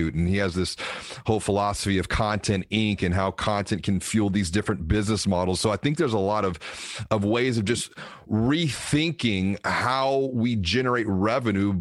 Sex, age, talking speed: male, 30-49, 175 wpm